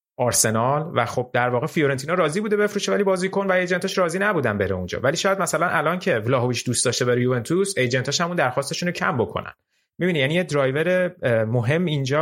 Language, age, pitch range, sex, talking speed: Persian, 30-49, 120-190 Hz, male, 195 wpm